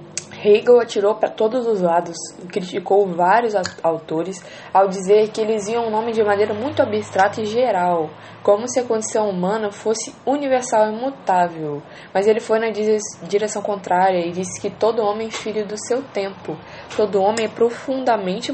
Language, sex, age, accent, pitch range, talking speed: Portuguese, female, 10-29, Brazilian, 175-215 Hz, 170 wpm